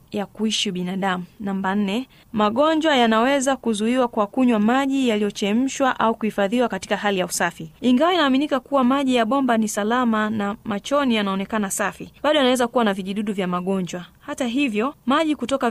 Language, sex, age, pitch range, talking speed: Swahili, female, 20-39, 200-255 Hz, 155 wpm